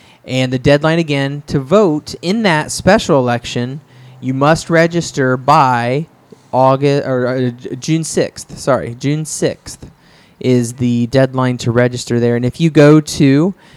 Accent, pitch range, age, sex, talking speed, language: American, 120-145 Hz, 20-39, male, 145 wpm, English